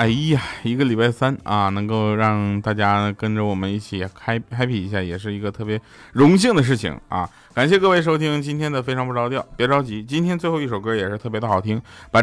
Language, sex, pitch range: Chinese, male, 100-145 Hz